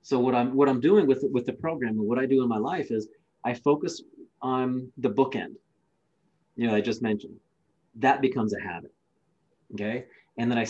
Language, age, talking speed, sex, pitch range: English, 30-49, 200 wpm, male, 115-130 Hz